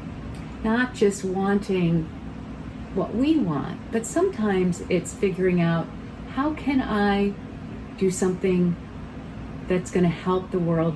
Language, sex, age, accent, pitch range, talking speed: English, female, 40-59, American, 175-245 Hz, 115 wpm